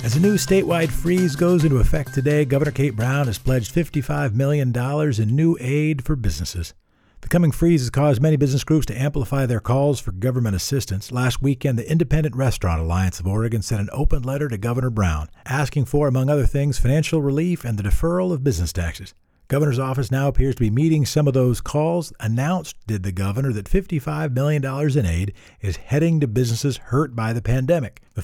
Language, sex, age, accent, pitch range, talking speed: English, male, 50-69, American, 100-145 Hz, 200 wpm